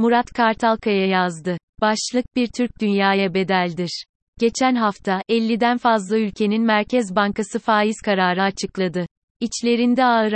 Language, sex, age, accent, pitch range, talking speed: Turkish, female, 30-49, native, 190-230 Hz, 115 wpm